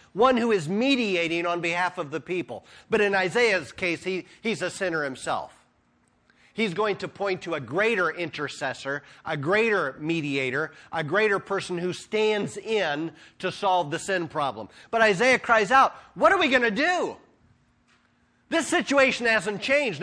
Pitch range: 170-245 Hz